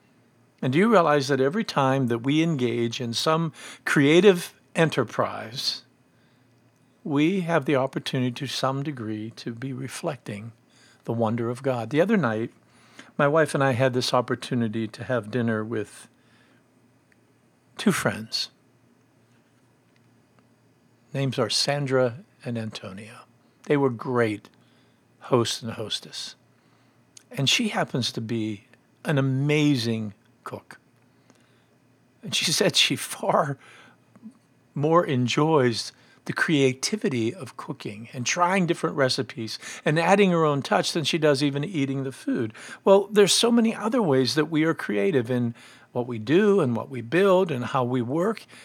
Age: 50-69